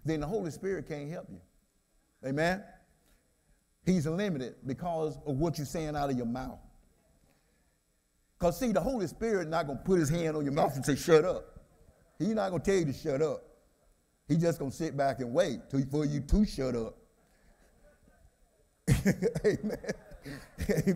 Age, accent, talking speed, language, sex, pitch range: 50-69, American, 165 wpm, English, male, 140-180 Hz